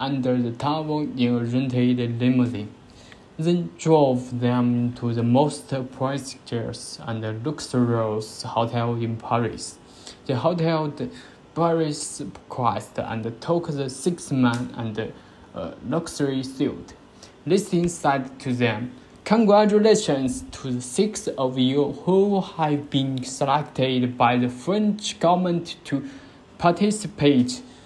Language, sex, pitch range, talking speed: Malay, male, 125-160 Hz, 110 wpm